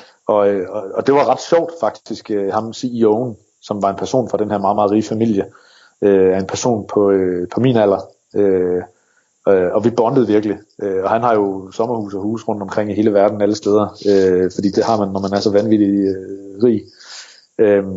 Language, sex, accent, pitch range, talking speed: Danish, male, native, 100-115 Hz, 185 wpm